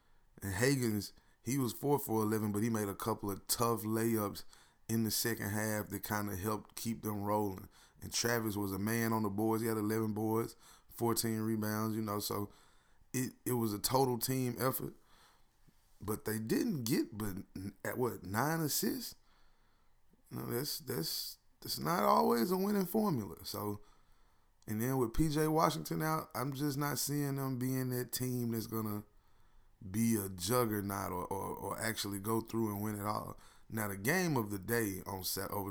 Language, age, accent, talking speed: English, 20-39, American, 185 wpm